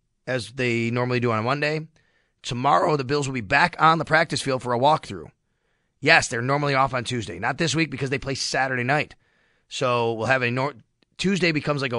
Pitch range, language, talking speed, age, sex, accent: 120-150 Hz, English, 210 wpm, 30-49, male, American